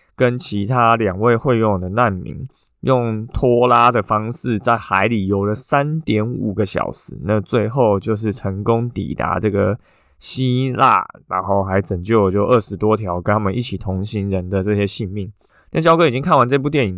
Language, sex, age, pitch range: Chinese, male, 20-39, 100-120 Hz